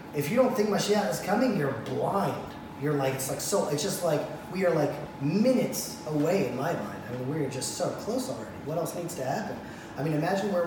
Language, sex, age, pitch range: English, male, 20-39, 145-210 Hz